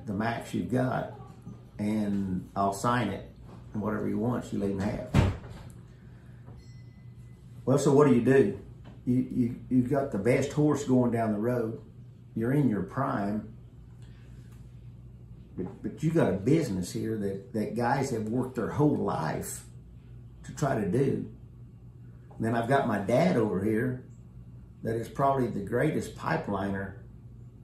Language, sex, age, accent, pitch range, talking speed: English, male, 50-69, American, 95-125 Hz, 150 wpm